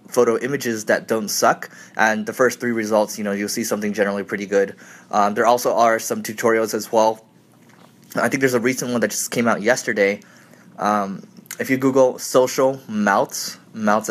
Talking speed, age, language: 185 wpm, 20-39, English